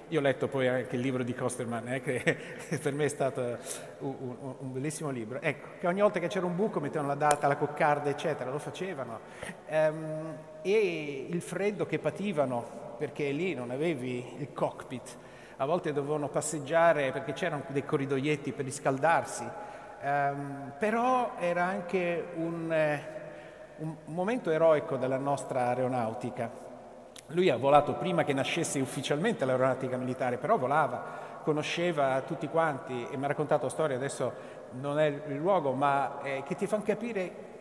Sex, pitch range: male, 135-170 Hz